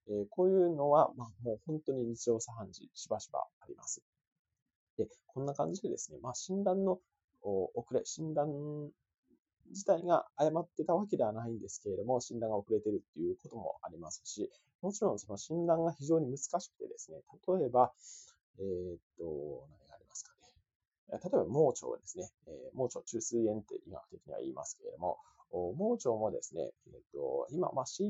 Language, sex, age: Japanese, male, 20-39